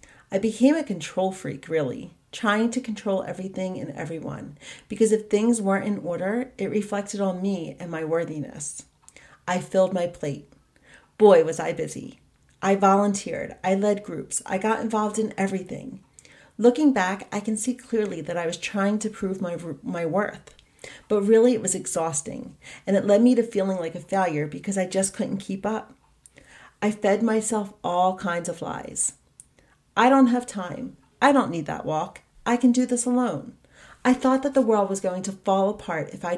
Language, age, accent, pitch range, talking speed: English, 40-59, American, 185-230 Hz, 185 wpm